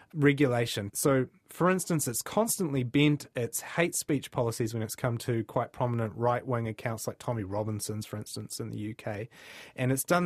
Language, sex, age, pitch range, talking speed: English, male, 30-49, 110-155 Hz, 175 wpm